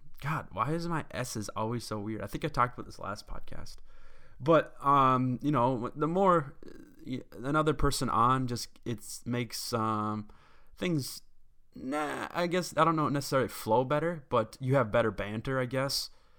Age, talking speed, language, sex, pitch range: 20-39, 170 wpm, English, male, 105-130 Hz